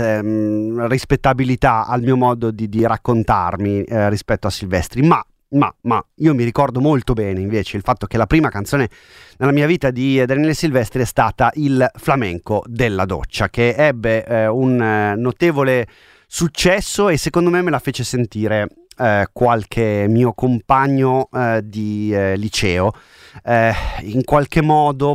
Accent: native